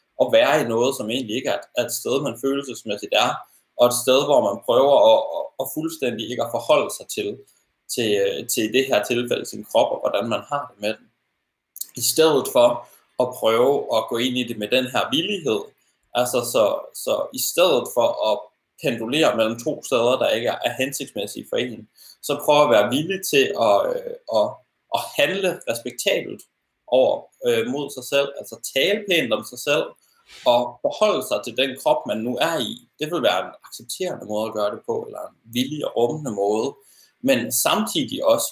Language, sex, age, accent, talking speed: Danish, male, 20-39, native, 190 wpm